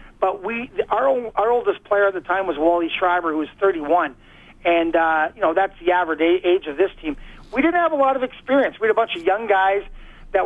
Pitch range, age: 165-195 Hz, 40-59